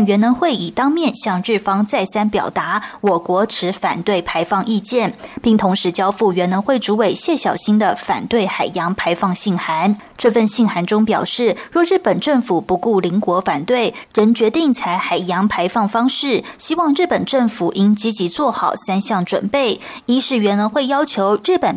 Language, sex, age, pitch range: Chinese, female, 20-39, 195-250 Hz